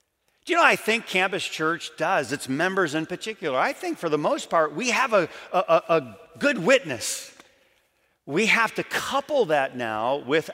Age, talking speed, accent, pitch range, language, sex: 40-59, 175 wpm, American, 145-215 Hz, English, male